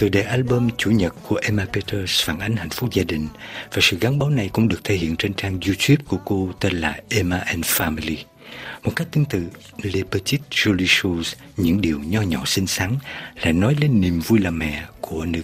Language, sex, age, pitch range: Vietnamese, male, 60-79, 85-110 Hz